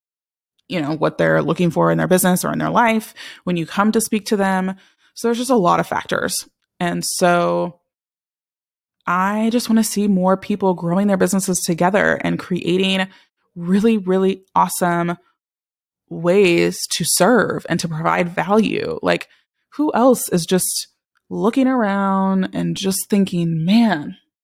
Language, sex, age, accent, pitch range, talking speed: English, female, 20-39, American, 170-210 Hz, 155 wpm